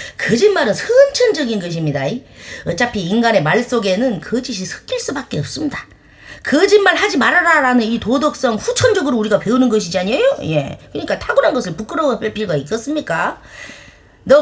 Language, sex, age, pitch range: Korean, female, 30-49, 200-315 Hz